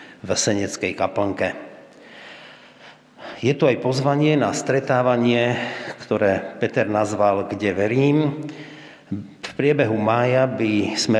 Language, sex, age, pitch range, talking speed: Slovak, male, 50-69, 105-130 Hz, 100 wpm